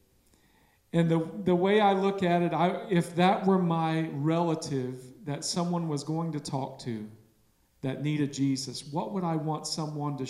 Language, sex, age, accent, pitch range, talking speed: English, male, 40-59, American, 135-175 Hz, 175 wpm